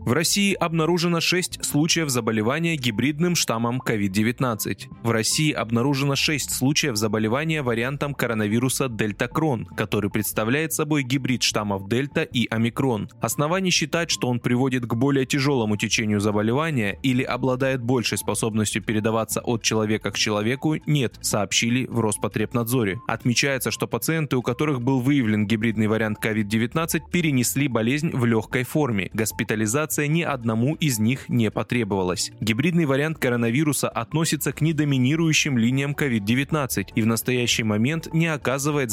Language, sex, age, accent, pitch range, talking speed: Russian, male, 20-39, native, 115-150 Hz, 135 wpm